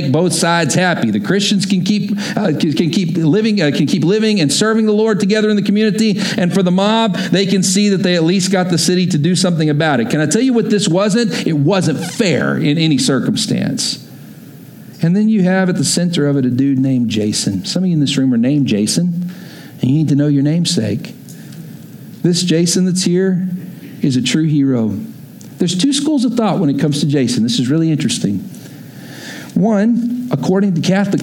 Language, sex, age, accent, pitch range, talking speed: English, male, 50-69, American, 135-195 Hz, 215 wpm